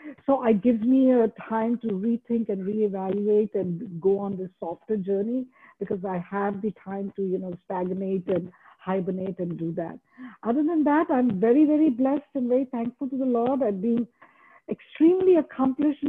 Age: 50-69